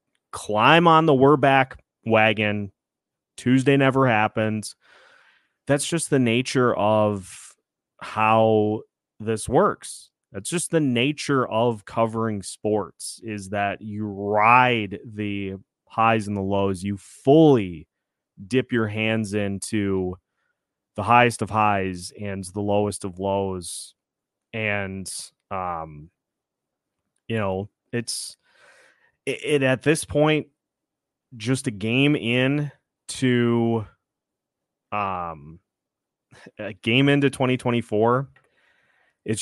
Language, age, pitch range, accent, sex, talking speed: English, 30-49, 100-120 Hz, American, male, 105 wpm